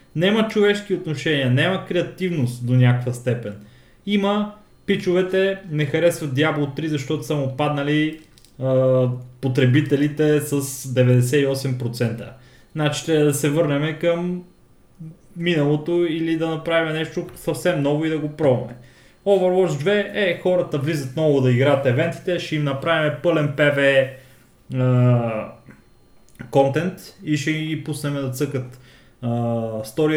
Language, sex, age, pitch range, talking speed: Bulgarian, male, 20-39, 130-175 Hz, 120 wpm